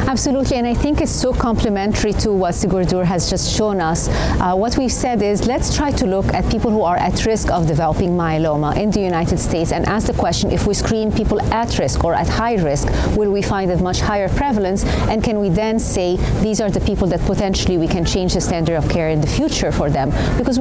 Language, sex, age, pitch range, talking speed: English, female, 30-49, 175-215 Hz, 235 wpm